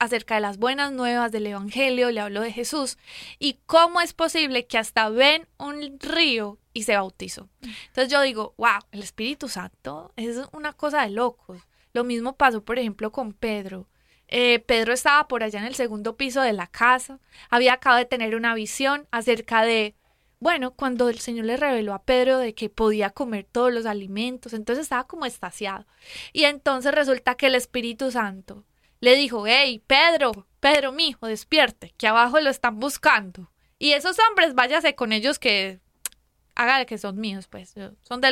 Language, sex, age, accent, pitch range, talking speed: Spanish, female, 20-39, Colombian, 215-270 Hz, 180 wpm